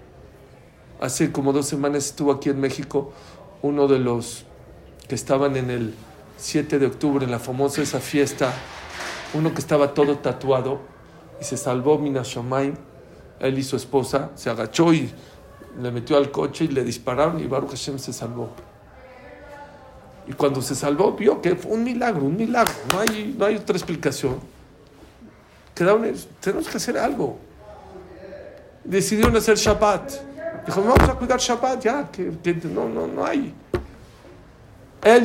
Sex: male